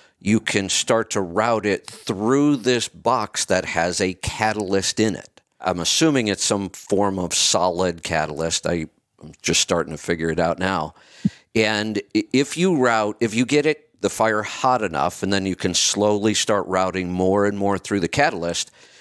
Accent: American